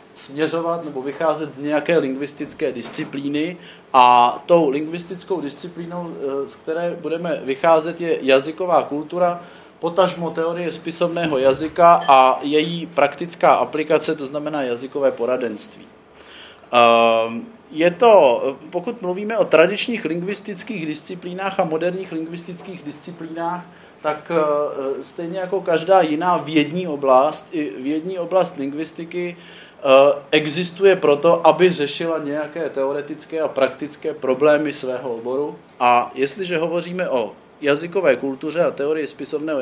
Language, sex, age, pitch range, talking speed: Czech, male, 30-49, 150-180 Hz, 110 wpm